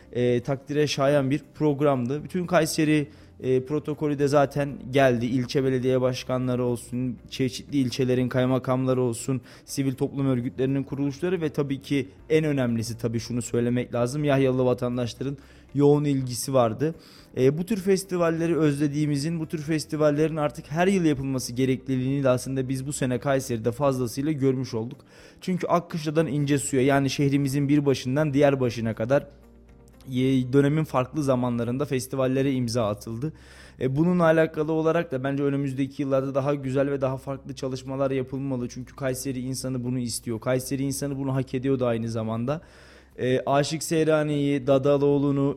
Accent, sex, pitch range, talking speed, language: native, male, 125-145 Hz, 140 wpm, Turkish